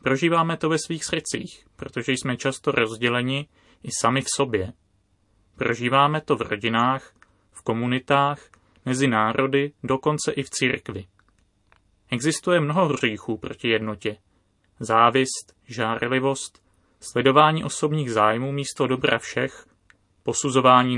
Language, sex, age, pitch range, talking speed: Czech, male, 30-49, 105-140 Hz, 110 wpm